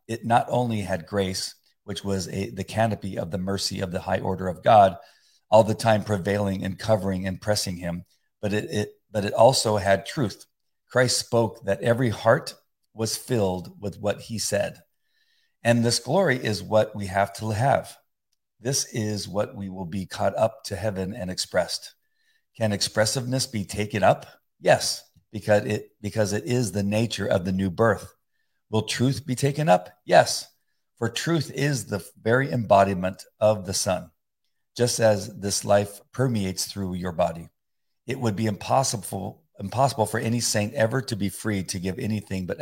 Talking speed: 175 wpm